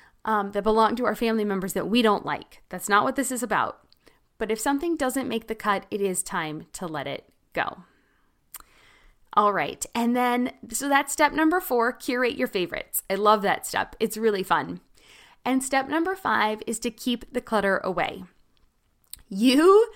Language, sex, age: English, female, 20-39